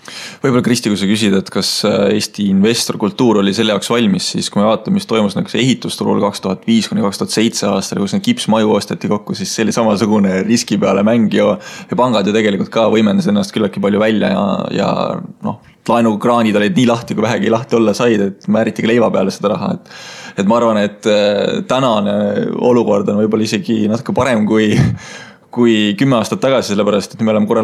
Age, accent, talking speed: 20-39, Finnish, 190 wpm